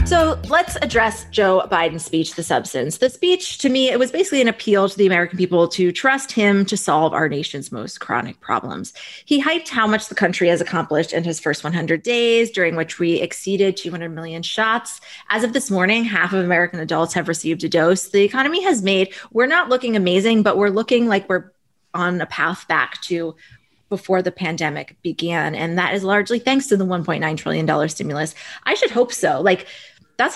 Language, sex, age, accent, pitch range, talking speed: English, female, 20-39, American, 170-230 Hz, 200 wpm